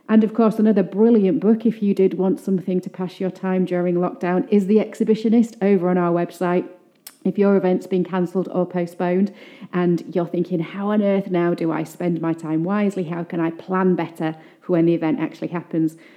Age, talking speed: 30-49, 205 wpm